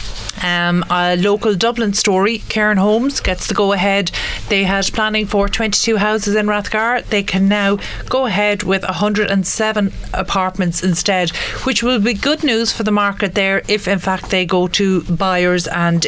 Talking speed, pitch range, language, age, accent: 170 wpm, 185-225 Hz, English, 40-59, Irish